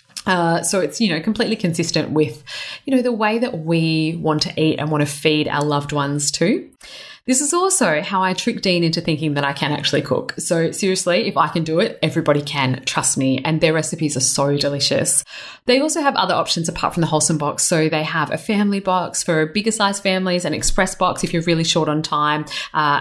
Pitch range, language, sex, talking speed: 150-195 Hz, English, female, 225 wpm